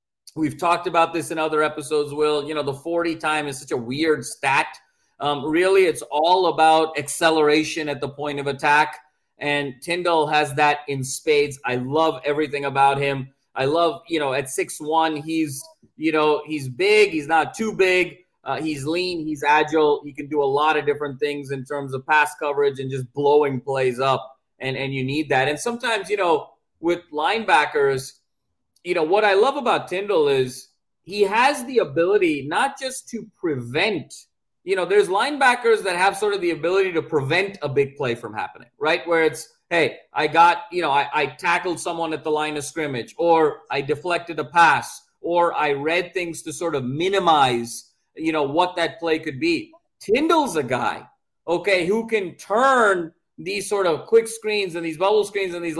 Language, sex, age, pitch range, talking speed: English, male, 30-49, 145-180 Hz, 190 wpm